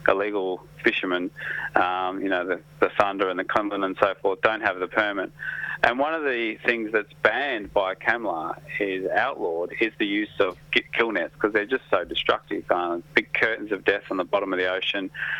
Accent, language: Australian, English